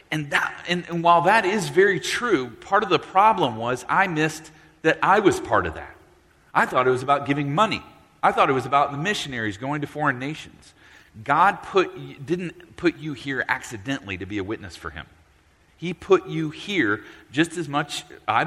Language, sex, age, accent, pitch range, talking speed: English, male, 40-59, American, 110-170 Hz, 200 wpm